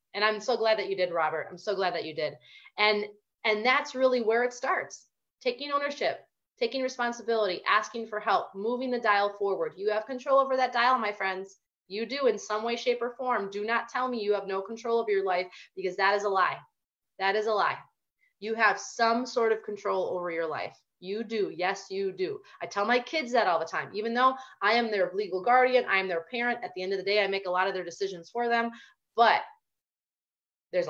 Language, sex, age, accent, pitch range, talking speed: English, female, 30-49, American, 185-245 Hz, 230 wpm